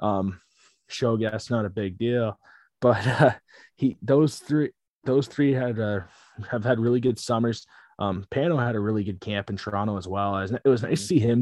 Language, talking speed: English, 205 wpm